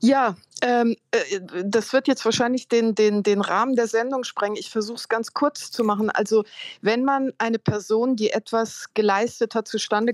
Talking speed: 180 wpm